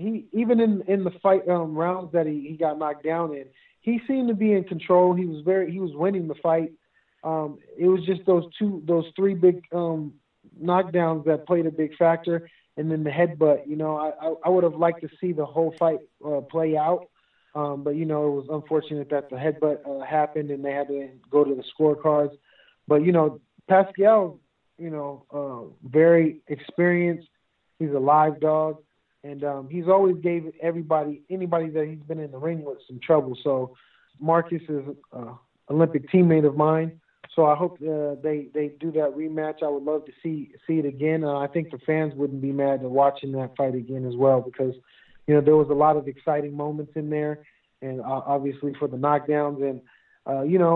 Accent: American